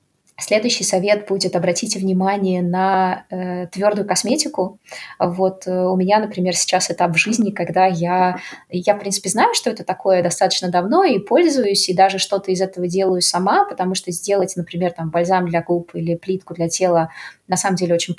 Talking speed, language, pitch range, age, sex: 180 wpm, Russian, 175-195 Hz, 20-39, female